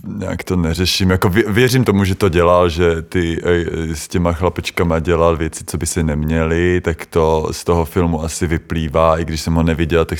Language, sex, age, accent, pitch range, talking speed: Czech, male, 20-39, native, 80-90 Hz, 205 wpm